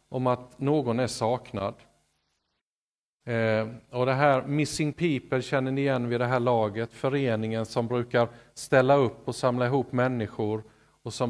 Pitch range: 100-150 Hz